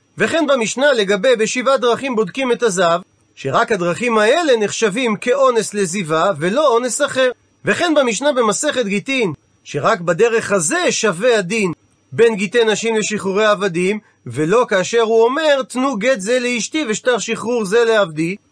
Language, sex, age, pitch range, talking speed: Hebrew, male, 40-59, 190-250 Hz, 140 wpm